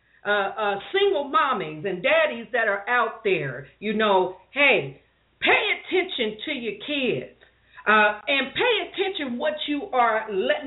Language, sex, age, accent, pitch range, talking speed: English, female, 50-69, American, 205-305 Hz, 145 wpm